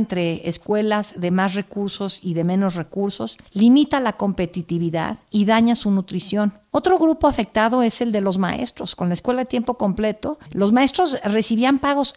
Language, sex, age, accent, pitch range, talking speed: Spanish, female, 50-69, Mexican, 185-240 Hz, 170 wpm